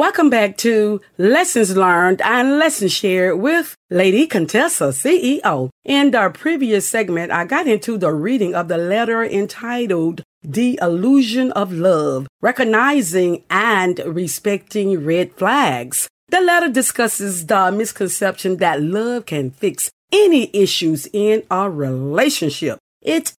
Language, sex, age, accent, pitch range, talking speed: English, female, 50-69, American, 175-245 Hz, 125 wpm